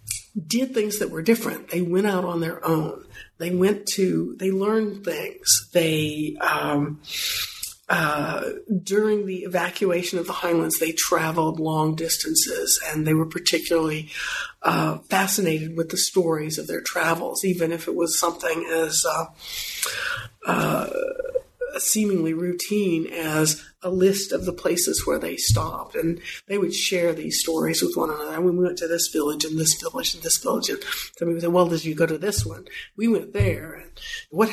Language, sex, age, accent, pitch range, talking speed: English, female, 50-69, American, 160-205 Hz, 170 wpm